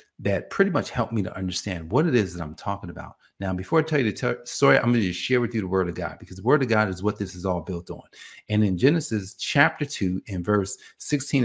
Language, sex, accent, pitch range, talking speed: English, male, American, 95-140 Hz, 275 wpm